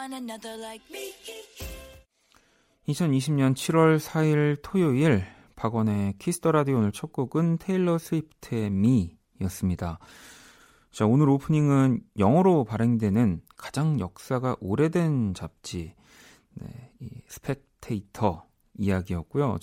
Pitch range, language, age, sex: 100-145 Hz, Korean, 40-59, male